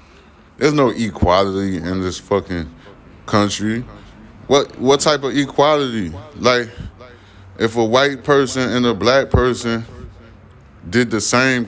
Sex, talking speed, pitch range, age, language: male, 125 wpm, 105-130 Hz, 20-39, English